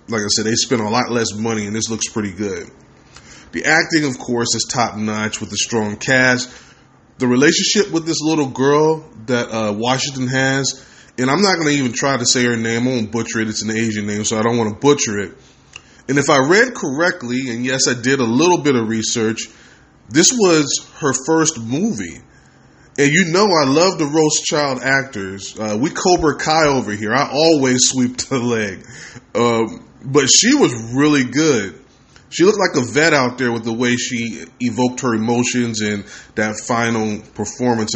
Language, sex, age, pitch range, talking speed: English, male, 20-39, 110-145 Hz, 195 wpm